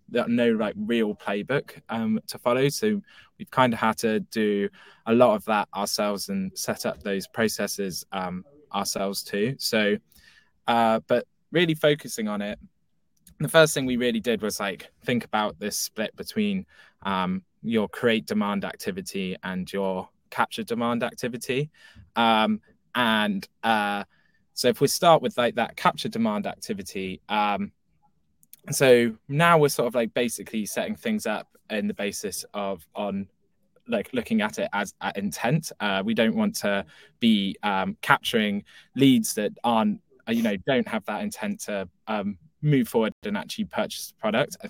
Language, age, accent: English, 10-29, British